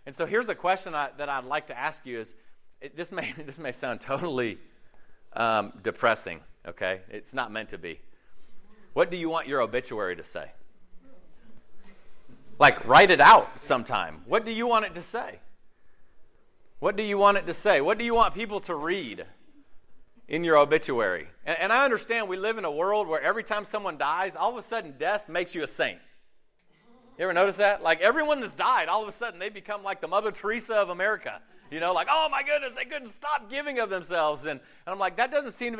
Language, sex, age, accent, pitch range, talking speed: English, male, 40-59, American, 170-235 Hz, 215 wpm